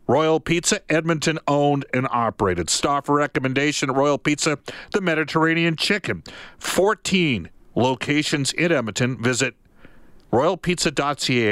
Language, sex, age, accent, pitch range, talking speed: English, male, 50-69, American, 115-155 Hz, 100 wpm